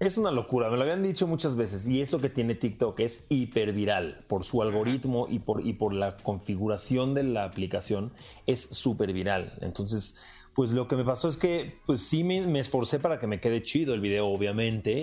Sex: male